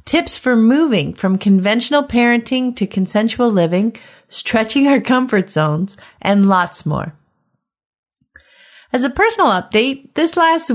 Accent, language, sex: American, English, female